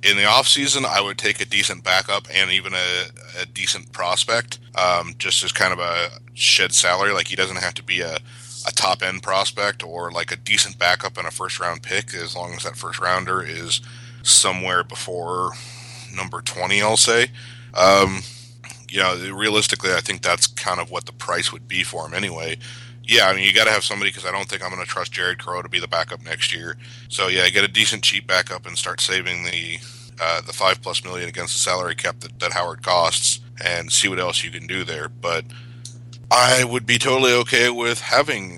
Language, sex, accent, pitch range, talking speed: English, male, American, 95-120 Hz, 215 wpm